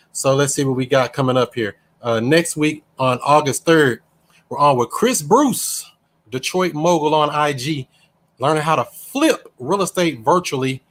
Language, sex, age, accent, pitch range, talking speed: English, male, 30-49, American, 130-165 Hz, 170 wpm